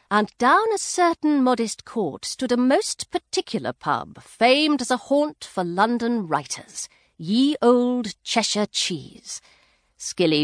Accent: British